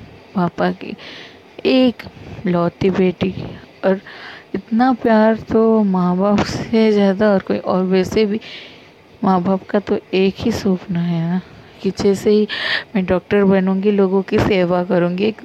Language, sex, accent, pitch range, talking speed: Hindi, female, native, 180-215 Hz, 150 wpm